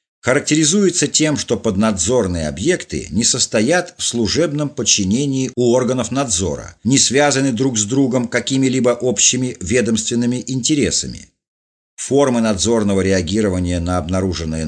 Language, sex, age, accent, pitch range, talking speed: Russian, male, 50-69, native, 90-130 Hz, 110 wpm